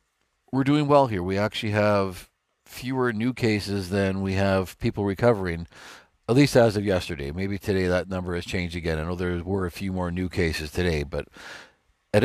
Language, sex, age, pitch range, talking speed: English, male, 50-69, 95-120 Hz, 190 wpm